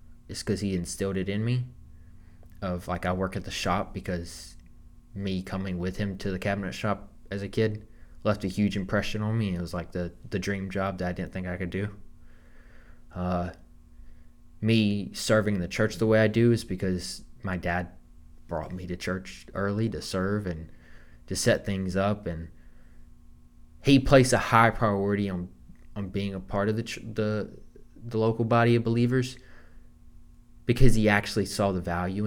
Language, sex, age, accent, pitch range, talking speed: English, male, 20-39, American, 80-105 Hz, 180 wpm